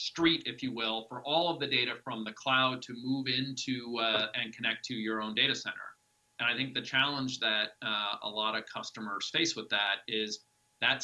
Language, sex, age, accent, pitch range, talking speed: English, male, 40-59, American, 110-135 Hz, 210 wpm